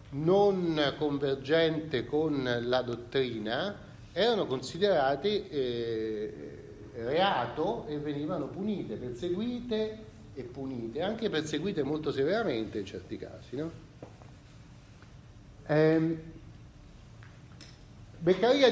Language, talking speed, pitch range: Italian, 80 wpm, 130-195 Hz